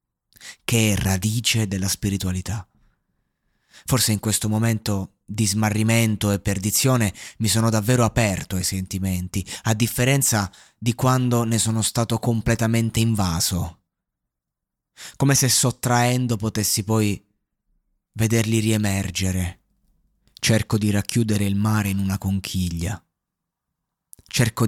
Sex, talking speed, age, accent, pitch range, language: male, 105 wpm, 20-39, native, 95-115 Hz, Italian